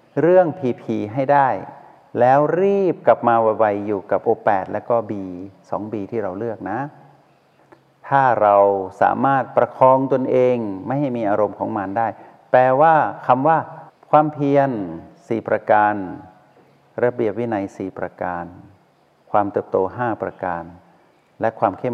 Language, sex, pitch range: Thai, male, 100-125 Hz